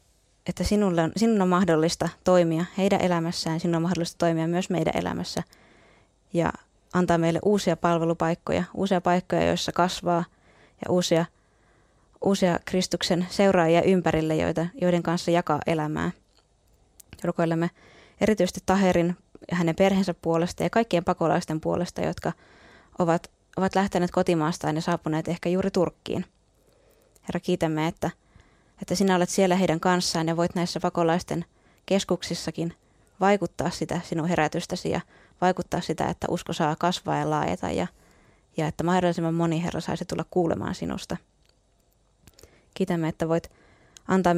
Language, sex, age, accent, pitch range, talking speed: Finnish, female, 20-39, native, 165-180 Hz, 130 wpm